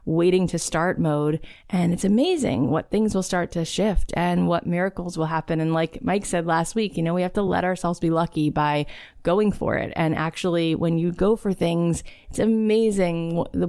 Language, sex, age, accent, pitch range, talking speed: English, female, 20-39, American, 165-195 Hz, 205 wpm